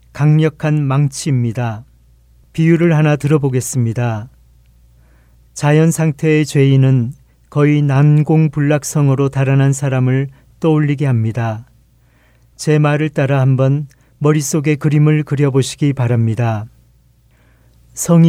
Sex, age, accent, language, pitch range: male, 40-59, native, Korean, 115-150 Hz